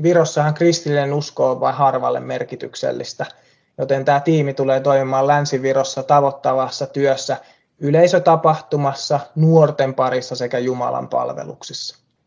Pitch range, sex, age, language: 130-150 Hz, male, 20-39, Finnish